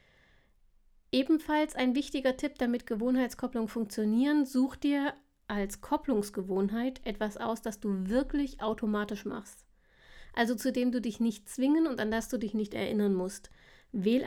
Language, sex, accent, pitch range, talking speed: German, female, German, 210-255 Hz, 145 wpm